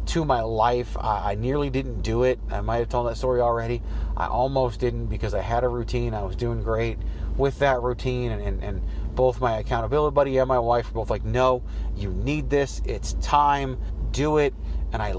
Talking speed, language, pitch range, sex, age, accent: 215 wpm, English, 110-145 Hz, male, 30-49, American